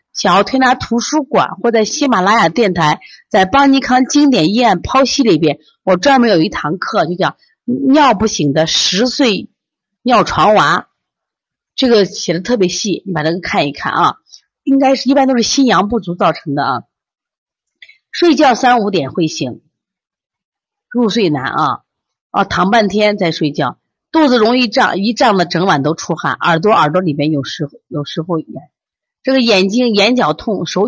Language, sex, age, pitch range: Chinese, female, 30-49, 175-255 Hz